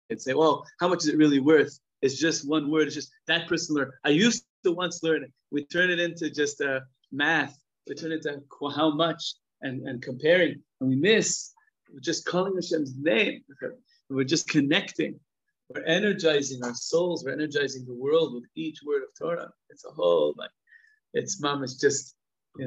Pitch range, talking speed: 125-160 Hz, 195 wpm